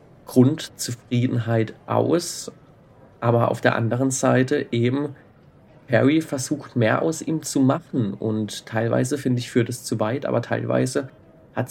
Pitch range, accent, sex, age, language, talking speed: 115-140 Hz, German, male, 30-49, German, 135 wpm